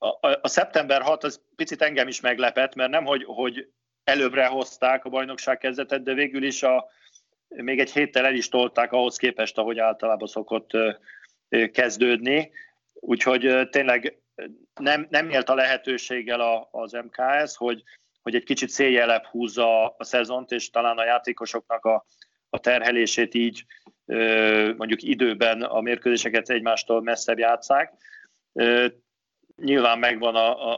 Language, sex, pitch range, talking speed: Hungarian, male, 115-130 Hz, 135 wpm